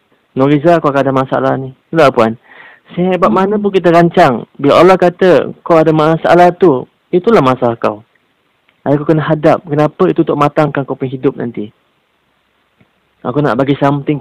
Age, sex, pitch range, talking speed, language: 30-49, male, 125-160 Hz, 155 wpm, Malay